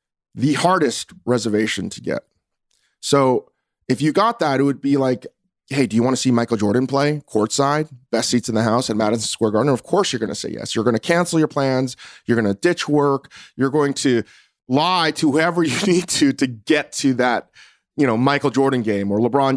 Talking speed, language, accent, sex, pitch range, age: 220 wpm, English, American, male, 120-155 Hz, 30-49